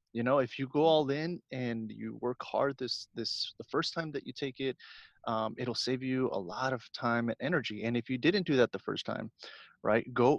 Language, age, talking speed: English, 30-49, 235 wpm